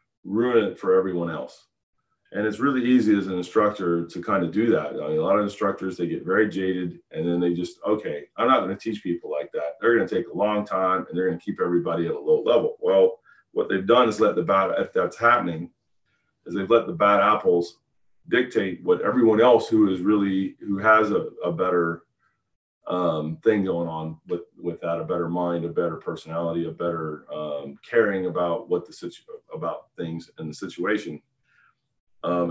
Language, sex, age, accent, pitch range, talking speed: English, male, 40-59, American, 85-105 Hz, 205 wpm